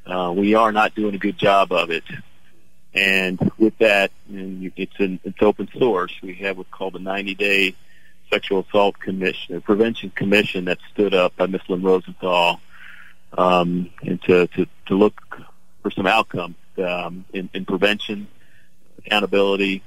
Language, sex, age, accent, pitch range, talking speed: English, male, 40-59, American, 95-105 Hz, 155 wpm